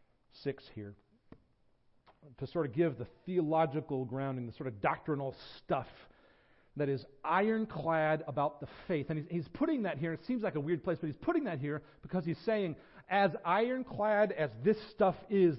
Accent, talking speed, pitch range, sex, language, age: American, 175 wpm, 120-160 Hz, male, English, 40-59